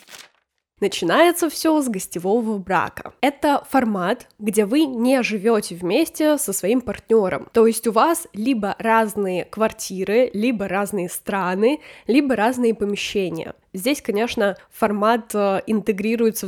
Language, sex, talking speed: Russian, female, 115 wpm